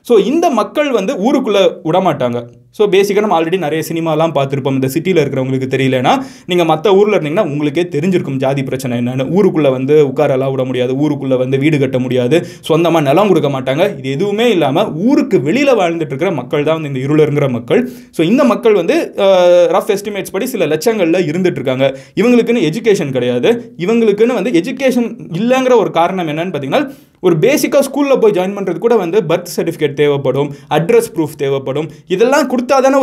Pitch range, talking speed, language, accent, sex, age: 145-225 Hz, 165 wpm, Tamil, native, male, 20-39